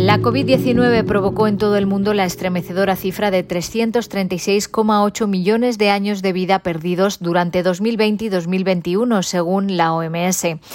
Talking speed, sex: 140 wpm, female